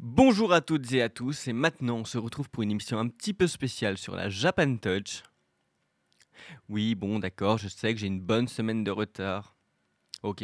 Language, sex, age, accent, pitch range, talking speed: French, male, 20-39, French, 105-135 Hz, 200 wpm